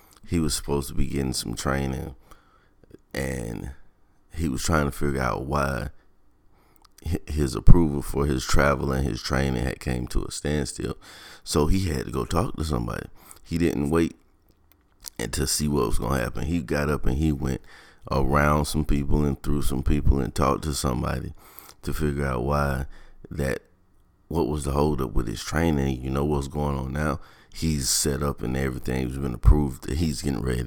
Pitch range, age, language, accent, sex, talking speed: 65-75 Hz, 30-49, English, American, male, 185 wpm